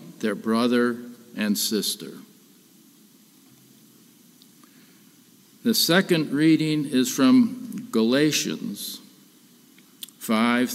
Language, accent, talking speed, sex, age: English, American, 60 wpm, male, 50-69